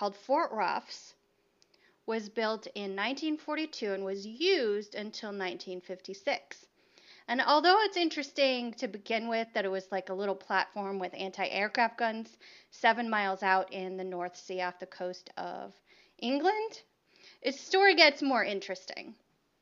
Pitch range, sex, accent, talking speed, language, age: 200-270 Hz, female, American, 140 wpm, English, 30-49